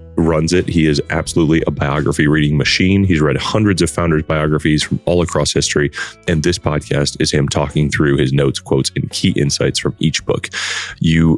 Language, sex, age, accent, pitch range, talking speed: English, male, 30-49, American, 75-90 Hz, 190 wpm